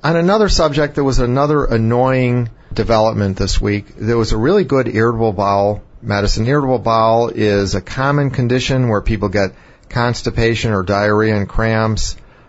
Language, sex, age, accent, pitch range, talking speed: English, male, 40-59, American, 100-125 Hz, 155 wpm